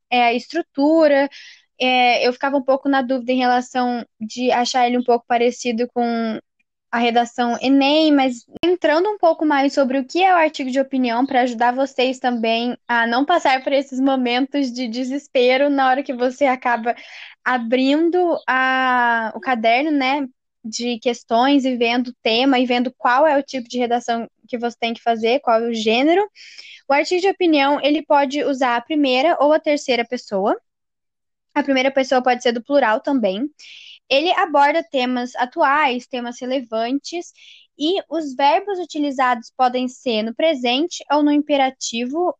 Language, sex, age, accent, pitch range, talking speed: Portuguese, female, 10-29, Brazilian, 240-290 Hz, 165 wpm